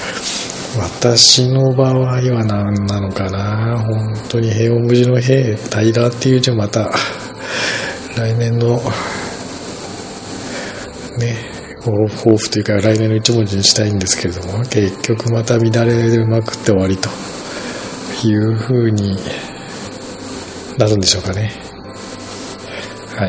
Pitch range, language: 100-120 Hz, Japanese